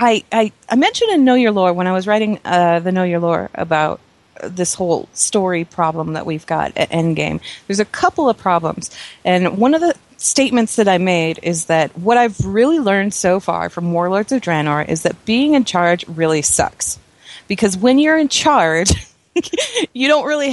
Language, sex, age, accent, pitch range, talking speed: English, female, 30-49, American, 180-250 Hz, 195 wpm